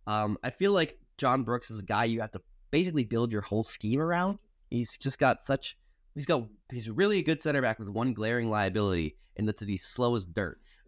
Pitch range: 90-120 Hz